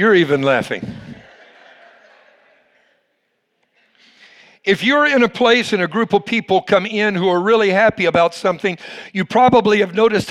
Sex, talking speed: male, 145 wpm